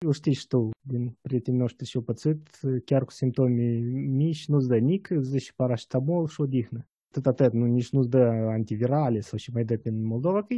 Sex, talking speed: male, 205 wpm